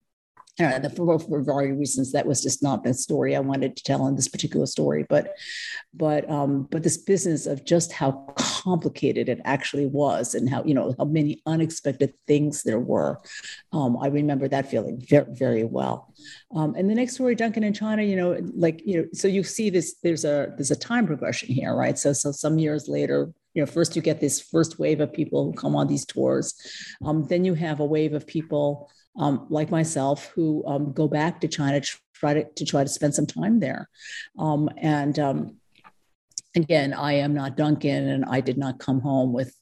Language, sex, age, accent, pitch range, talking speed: English, female, 50-69, American, 140-165 Hz, 205 wpm